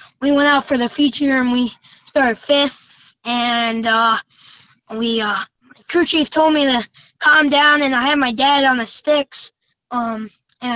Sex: female